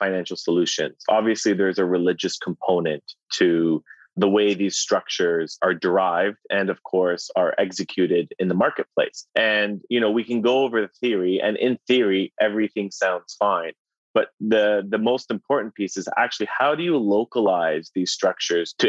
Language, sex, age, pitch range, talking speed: English, male, 30-49, 95-110 Hz, 165 wpm